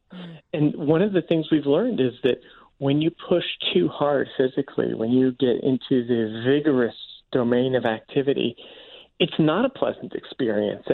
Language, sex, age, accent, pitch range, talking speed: English, male, 40-59, American, 125-165 Hz, 160 wpm